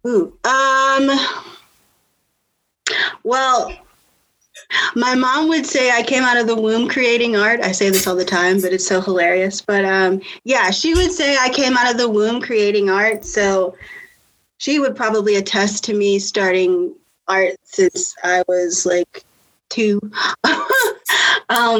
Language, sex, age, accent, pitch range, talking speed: English, female, 20-39, American, 190-240 Hz, 150 wpm